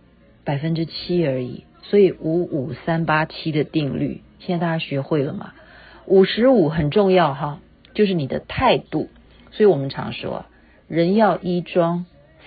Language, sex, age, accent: Chinese, female, 50-69, native